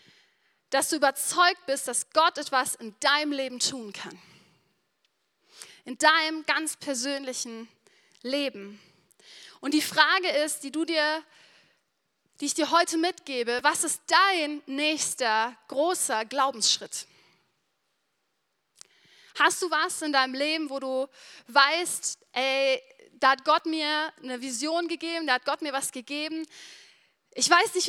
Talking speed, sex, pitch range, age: 130 wpm, female, 250-320 Hz, 30-49